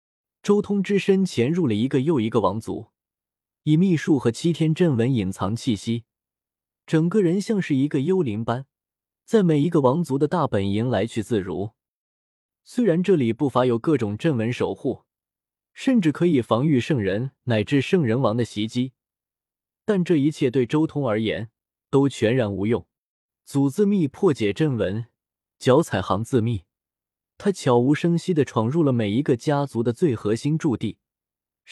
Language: Chinese